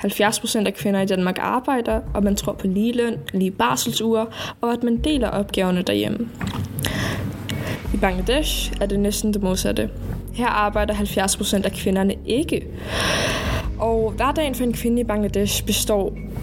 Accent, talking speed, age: native, 150 wpm, 20-39